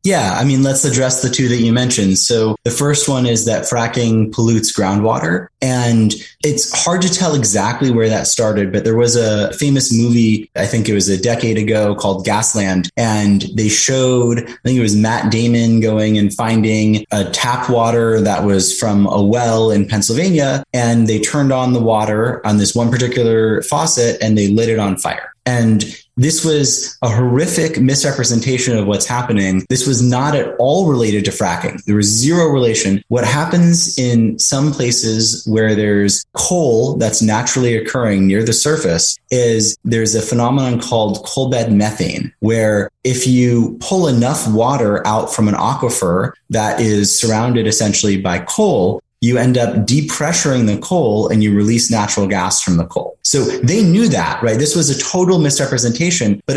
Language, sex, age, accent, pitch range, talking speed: English, male, 20-39, American, 105-125 Hz, 175 wpm